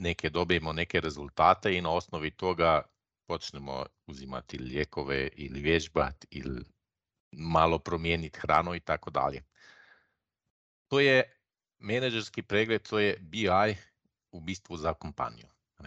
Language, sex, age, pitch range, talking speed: Croatian, male, 50-69, 80-100 Hz, 110 wpm